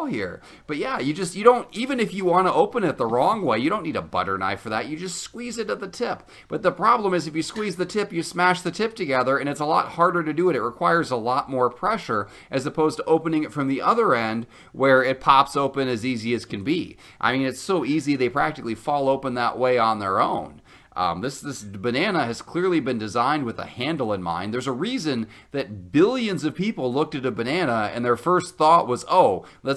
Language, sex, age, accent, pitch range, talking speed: English, male, 30-49, American, 120-180 Hz, 250 wpm